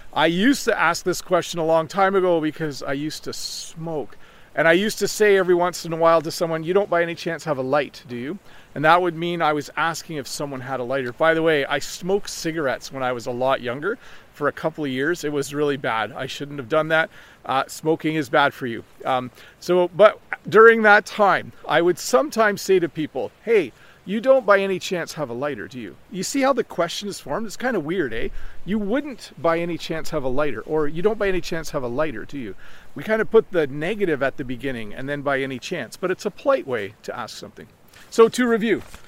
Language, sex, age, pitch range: English, male, 40-59, 150-195 Hz